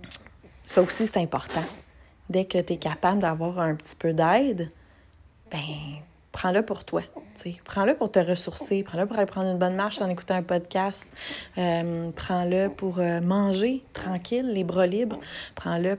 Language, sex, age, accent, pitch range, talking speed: French, female, 30-49, Canadian, 180-210 Hz, 160 wpm